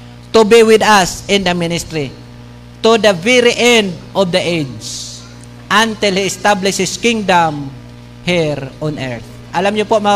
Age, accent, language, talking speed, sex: 50-69, native, Filipino, 155 wpm, male